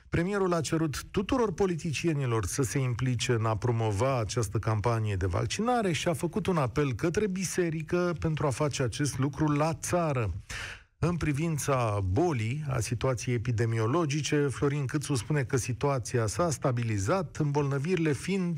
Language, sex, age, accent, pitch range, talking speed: Romanian, male, 40-59, native, 110-165 Hz, 140 wpm